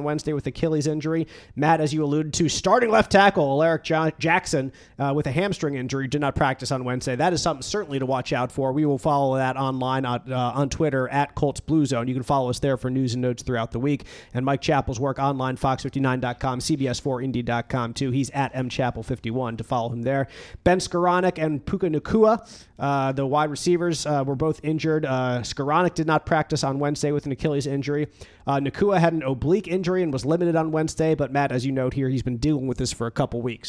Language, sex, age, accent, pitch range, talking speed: English, male, 30-49, American, 130-160 Hz, 220 wpm